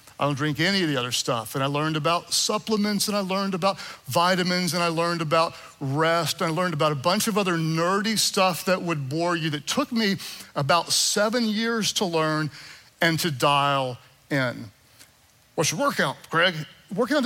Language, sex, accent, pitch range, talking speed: English, male, American, 150-195 Hz, 190 wpm